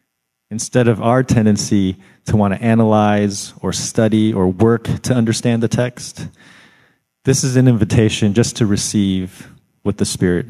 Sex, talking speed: male, 150 wpm